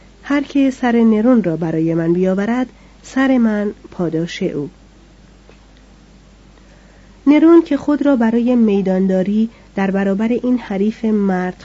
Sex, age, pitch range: female, 30-49, 185-235 Hz